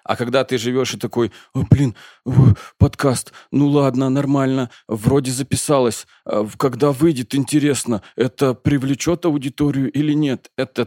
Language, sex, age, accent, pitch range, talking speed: Russian, male, 20-39, native, 110-140 Hz, 120 wpm